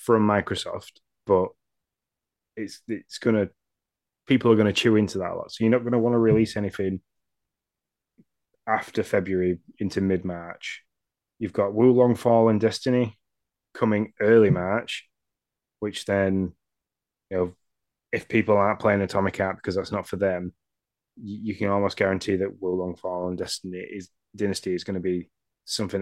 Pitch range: 95-110 Hz